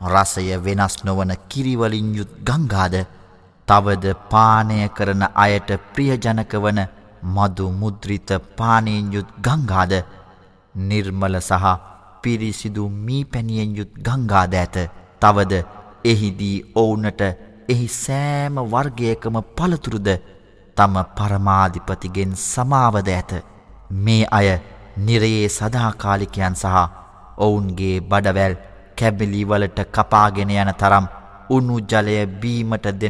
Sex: male